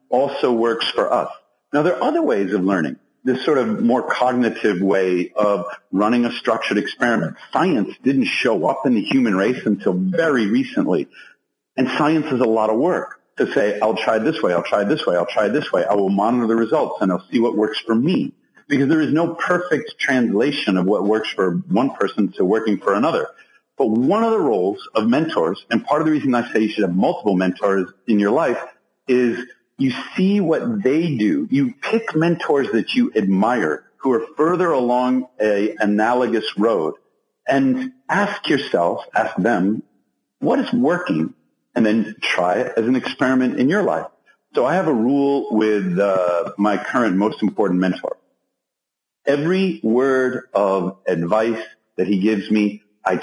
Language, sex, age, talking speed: English, male, 50-69, 185 wpm